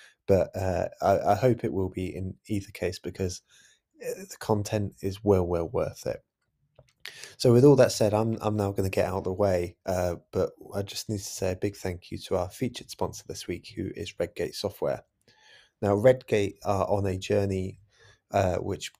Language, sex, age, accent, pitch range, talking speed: English, male, 20-39, British, 95-110 Hz, 200 wpm